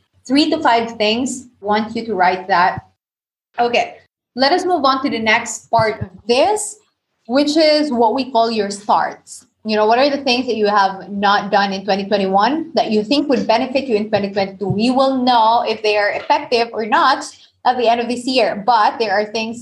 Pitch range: 195-240 Hz